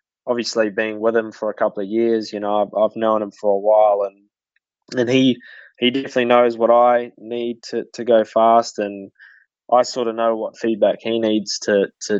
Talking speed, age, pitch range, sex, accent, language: 205 wpm, 20-39, 100-110 Hz, male, Australian, English